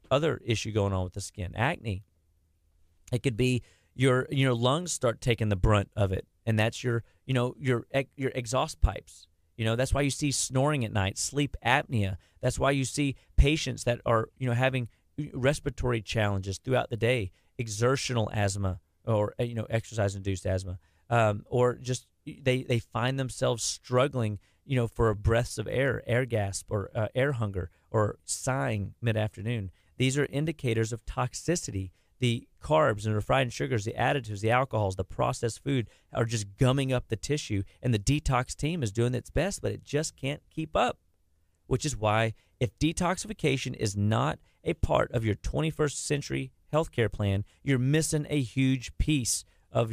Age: 30-49